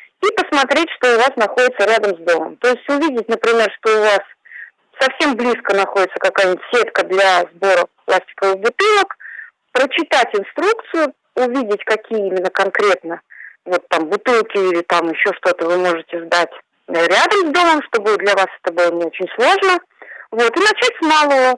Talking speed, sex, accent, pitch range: 150 wpm, female, native, 190-285 Hz